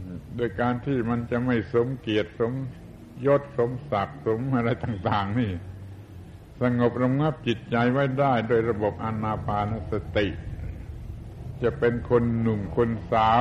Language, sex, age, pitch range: Thai, male, 70-89, 105-125 Hz